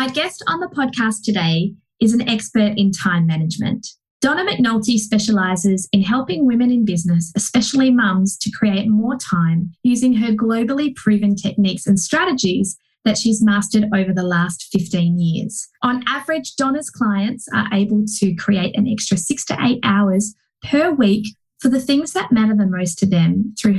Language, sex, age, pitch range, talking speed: English, female, 20-39, 200-250 Hz, 165 wpm